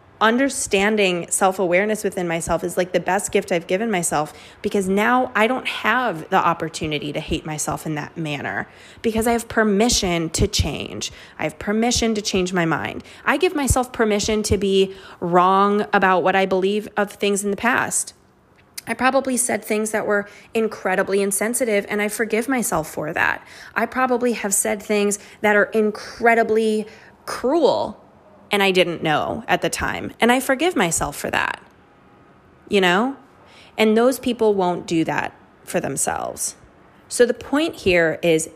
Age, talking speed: 20-39, 165 wpm